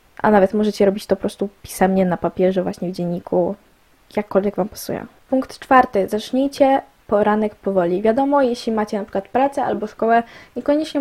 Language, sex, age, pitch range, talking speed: Polish, female, 10-29, 200-260 Hz, 165 wpm